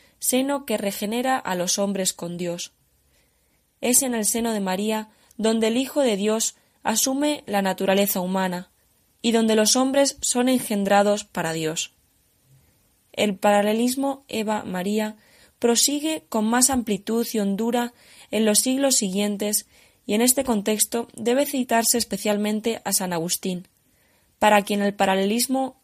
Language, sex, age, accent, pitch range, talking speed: Spanish, female, 20-39, Spanish, 190-235 Hz, 135 wpm